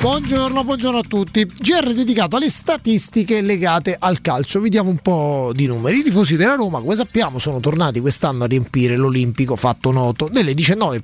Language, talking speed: Italian, 175 wpm